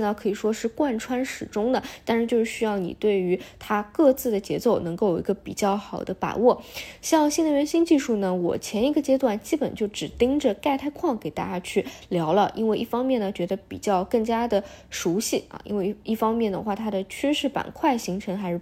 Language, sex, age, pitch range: Chinese, female, 10-29, 185-235 Hz